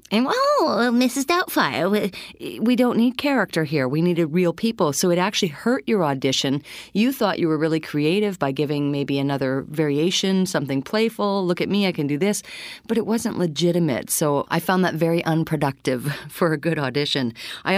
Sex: female